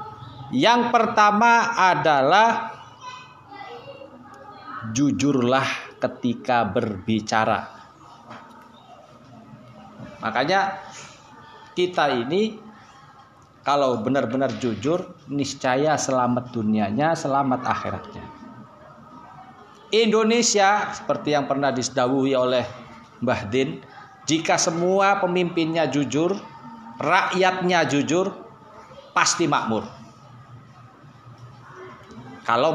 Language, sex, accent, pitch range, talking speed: Indonesian, male, native, 130-205 Hz, 60 wpm